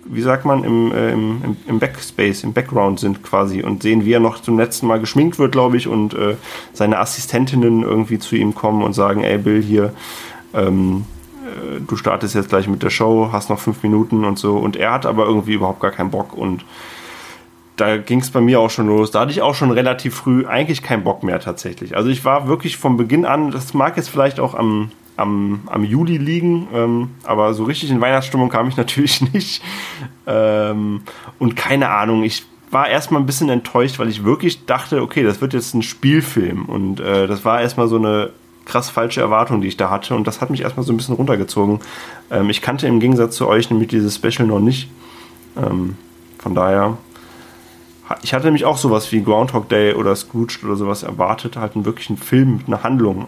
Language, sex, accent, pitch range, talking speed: German, male, German, 105-125 Hz, 210 wpm